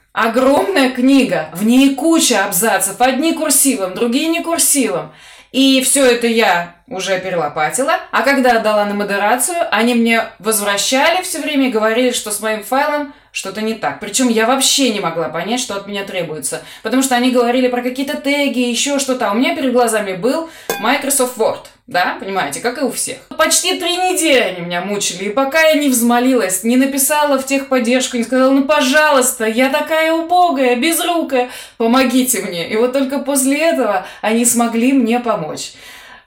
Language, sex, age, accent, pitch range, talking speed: Russian, female, 20-39, native, 205-270 Hz, 170 wpm